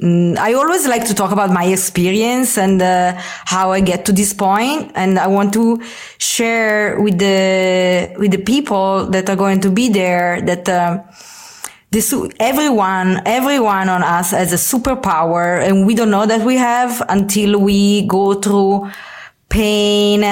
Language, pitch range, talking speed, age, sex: English, 185-220 Hz, 160 wpm, 20-39, female